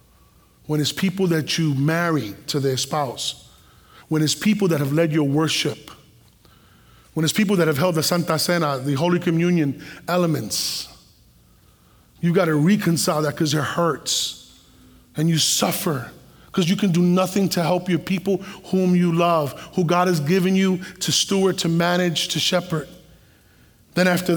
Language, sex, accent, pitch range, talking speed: English, male, American, 155-185 Hz, 160 wpm